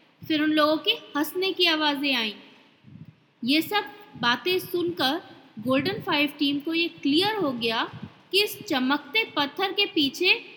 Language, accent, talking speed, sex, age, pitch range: Hindi, native, 150 wpm, female, 20-39, 280-360 Hz